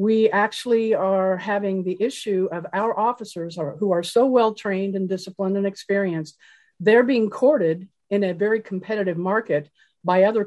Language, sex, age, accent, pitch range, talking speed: English, female, 50-69, American, 175-215 Hz, 160 wpm